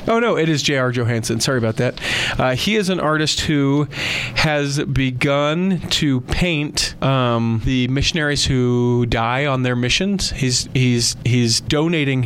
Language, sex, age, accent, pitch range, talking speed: English, male, 30-49, American, 115-140 Hz, 150 wpm